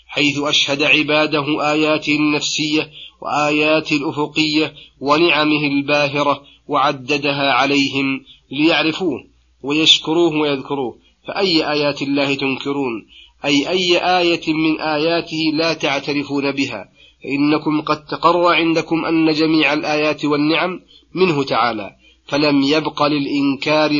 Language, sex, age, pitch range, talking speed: Arabic, male, 40-59, 140-160 Hz, 100 wpm